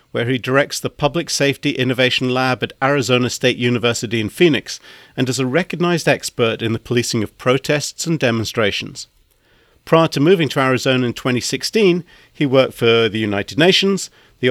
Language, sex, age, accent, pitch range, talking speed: English, male, 50-69, British, 115-150 Hz, 165 wpm